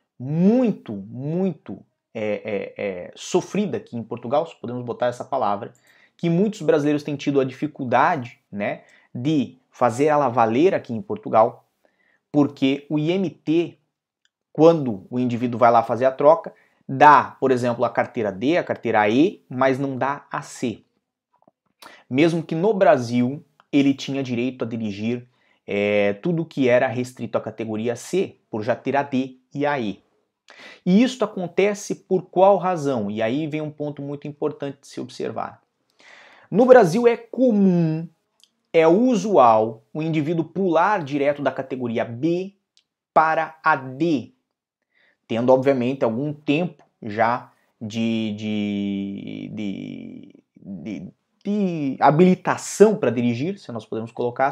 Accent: Brazilian